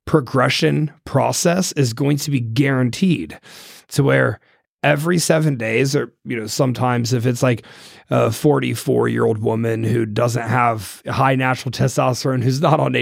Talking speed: 150 wpm